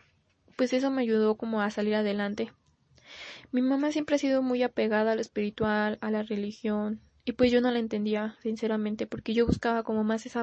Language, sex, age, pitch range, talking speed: Spanish, female, 10-29, 215-240 Hz, 195 wpm